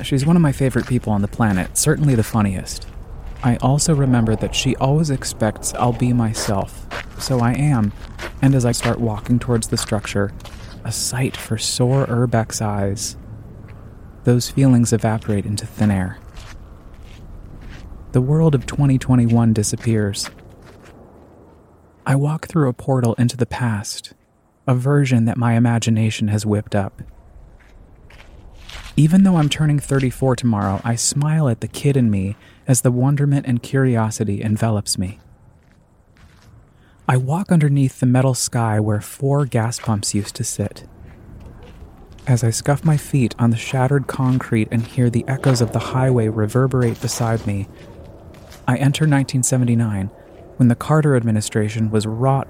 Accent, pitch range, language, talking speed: American, 105-130 Hz, English, 145 wpm